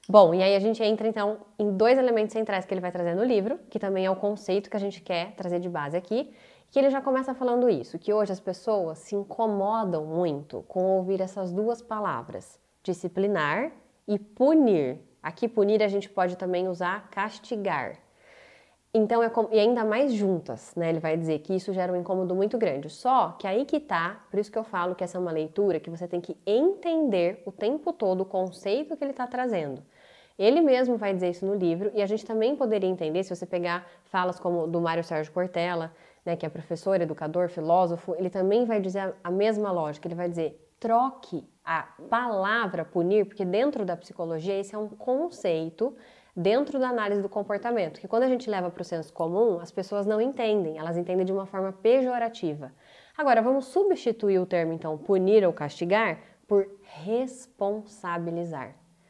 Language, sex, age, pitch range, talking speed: Portuguese, female, 20-39, 175-225 Hz, 195 wpm